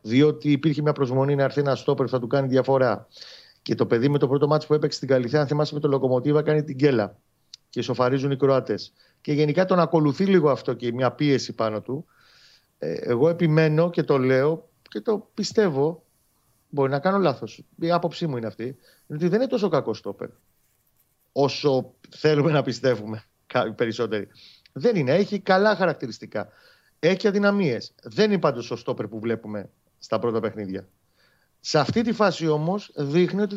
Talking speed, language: 180 wpm, Greek